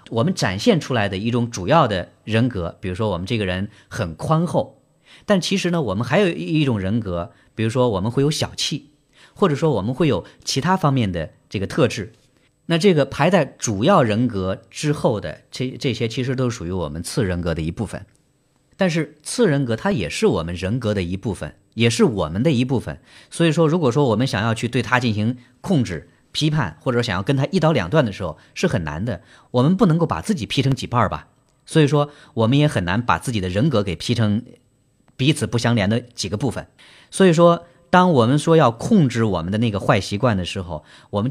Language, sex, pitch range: Chinese, male, 105-155 Hz